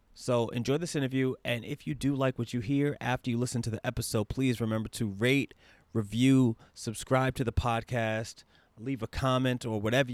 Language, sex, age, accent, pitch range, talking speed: English, male, 30-49, American, 105-120 Hz, 190 wpm